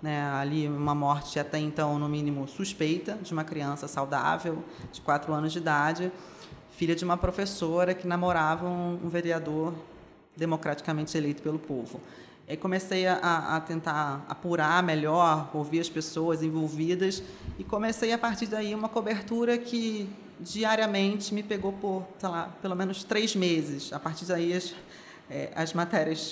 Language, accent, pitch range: Portuguese, Brazilian, 160-190 Hz